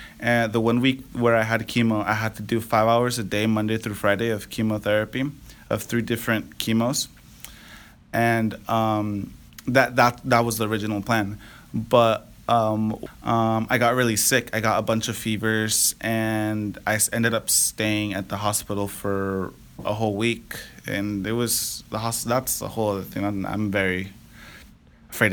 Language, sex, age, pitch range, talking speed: English, male, 20-39, 105-115 Hz, 170 wpm